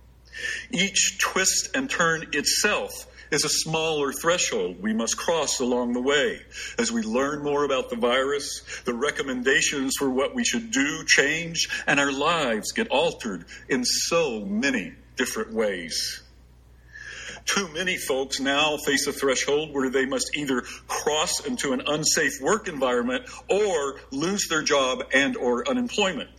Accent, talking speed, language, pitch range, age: American, 145 wpm, English, 135-220 Hz, 50-69